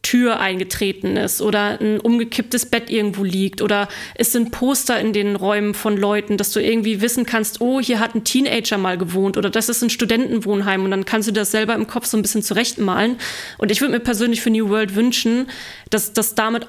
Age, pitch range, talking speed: 20-39, 215-240 Hz, 215 wpm